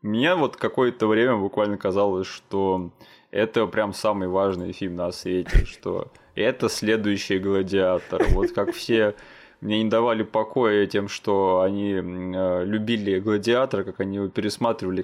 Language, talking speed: Russian, 130 wpm